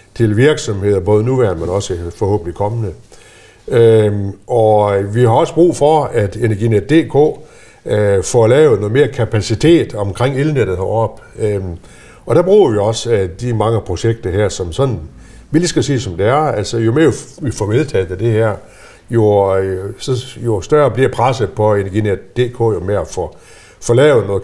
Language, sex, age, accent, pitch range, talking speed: Danish, male, 60-79, native, 100-125 Hz, 175 wpm